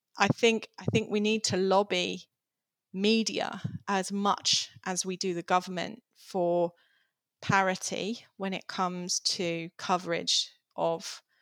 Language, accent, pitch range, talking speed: English, British, 170-185 Hz, 125 wpm